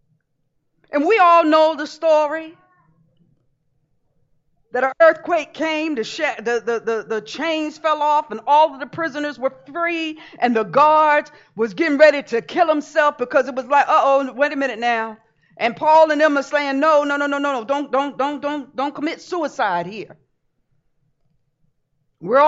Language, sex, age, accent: English, female, 50-69, American